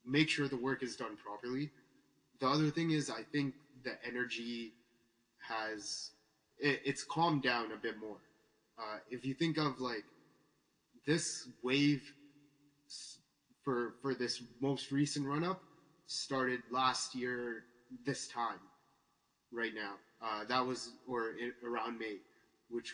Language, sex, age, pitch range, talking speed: English, male, 20-39, 110-135 Hz, 135 wpm